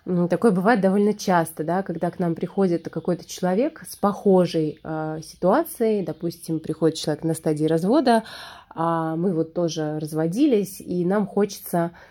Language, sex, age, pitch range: Russian, female, 20-39, 160-200 Hz